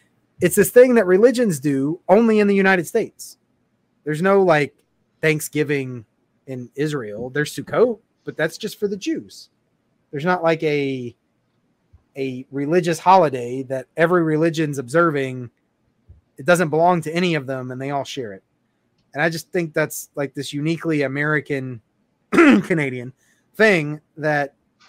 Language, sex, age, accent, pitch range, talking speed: English, male, 30-49, American, 130-170 Hz, 145 wpm